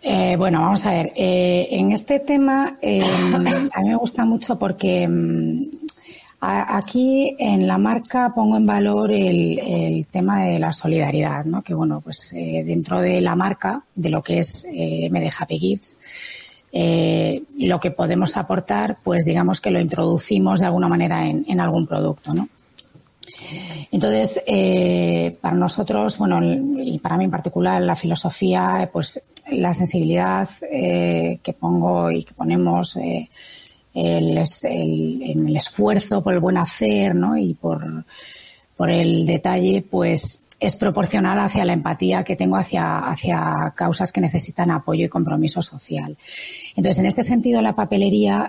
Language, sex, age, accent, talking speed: Spanish, female, 30-49, Spanish, 155 wpm